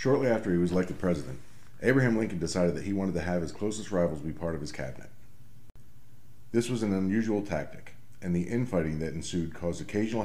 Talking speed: 200 wpm